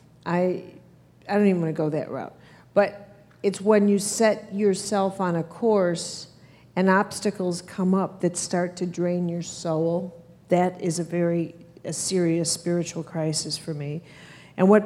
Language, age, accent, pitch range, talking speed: English, 50-69, American, 165-195 Hz, 160 wpm